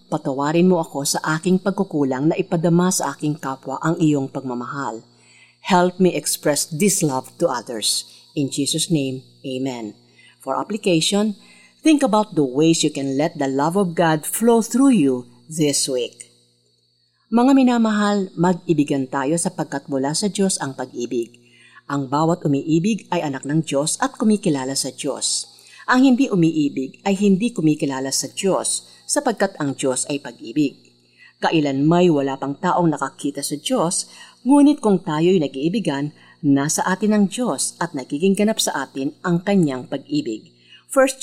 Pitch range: 135-200 Hz